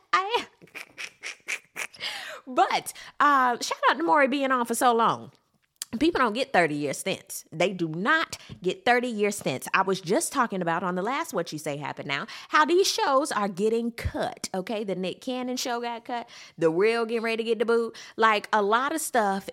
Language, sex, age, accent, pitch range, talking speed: English, female, 20-39, American, 180-280 Hz, 190 wpm